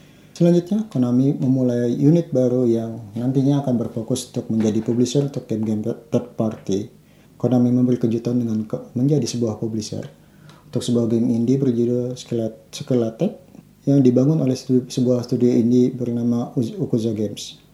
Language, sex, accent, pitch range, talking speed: Indonesian, male, native, 115-140 Hz, 130 wpm